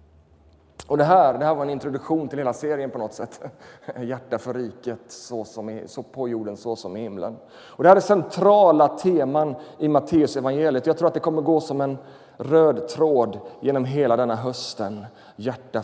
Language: Swedish